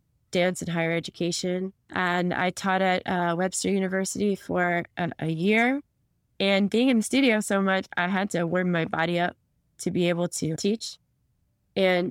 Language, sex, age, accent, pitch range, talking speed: English, female, 20-39, American, 165-190 Hz, 175 wpm